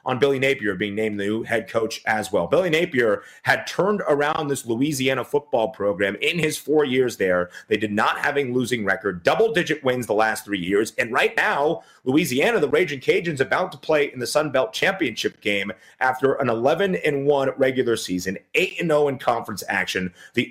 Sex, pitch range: male, 110-150 Hz